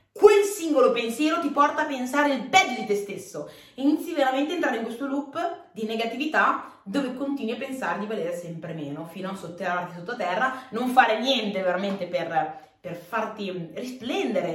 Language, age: Italian, 20-39